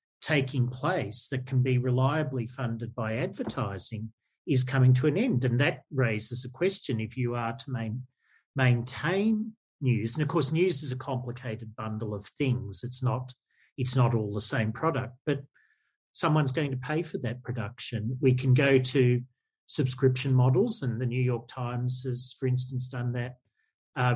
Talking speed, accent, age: 170 wpm, Australian, 40-59